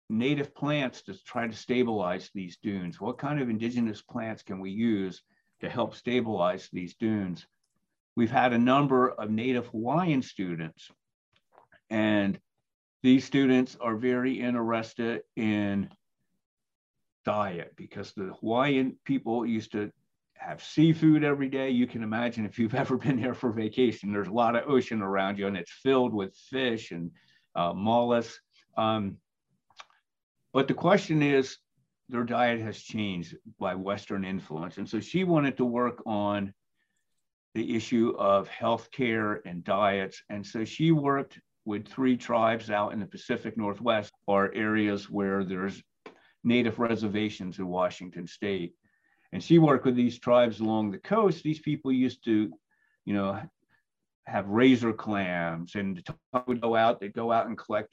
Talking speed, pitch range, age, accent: 150 wpm, 100-125 Hz, 50-69, American